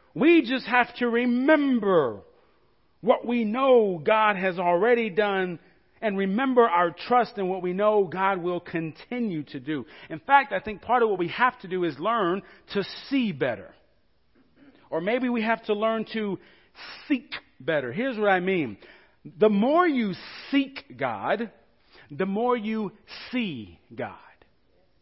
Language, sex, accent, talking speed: English, male, American, 155 wpm